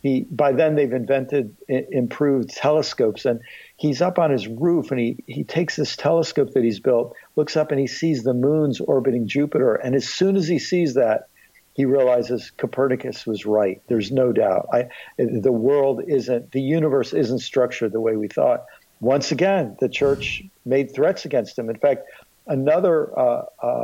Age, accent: 50-69, American